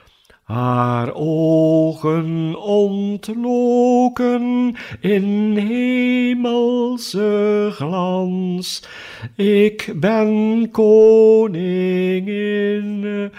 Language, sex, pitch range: Dutch, male, 160-210 Hz